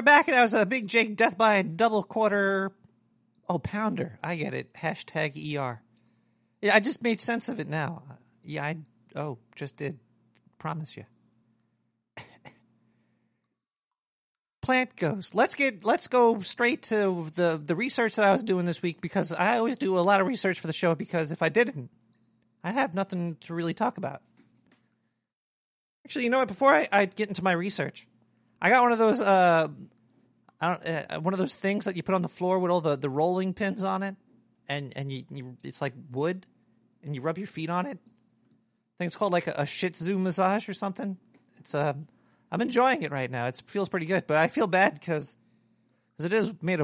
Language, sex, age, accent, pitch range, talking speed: English, male, 40-59, American, 125-200 Hz, 200 wpm